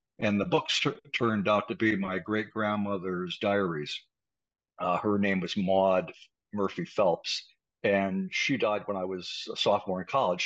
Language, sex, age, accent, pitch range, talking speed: English, male, 60-79, American, 95-120 Hz, 160 wpm